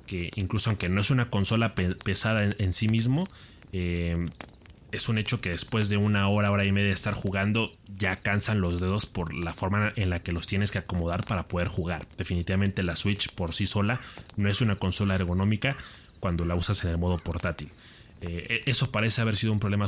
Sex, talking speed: male, 210 wpm